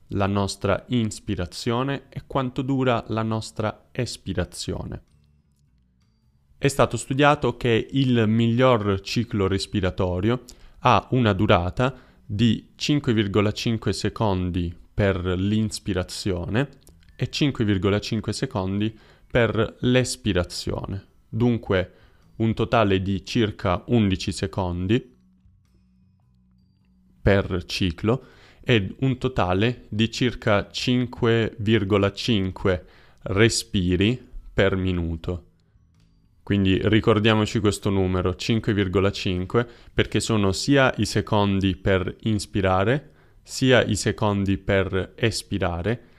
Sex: male